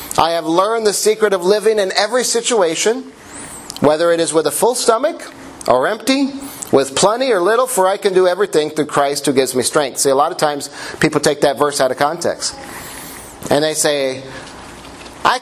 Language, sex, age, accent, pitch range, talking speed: English, male, 40-59, American, 145-225 Hz, 195 wpm